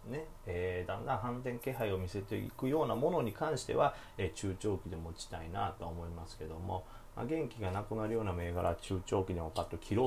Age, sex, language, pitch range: 30-49, male, Japanese, 90-120 Hz